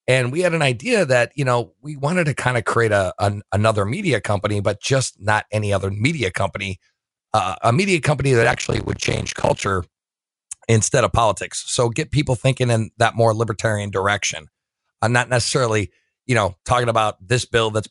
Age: 40-59